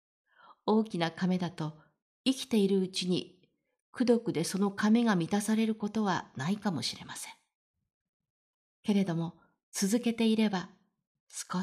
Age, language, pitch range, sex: 50-69, Japanese, 170-220 Hz, female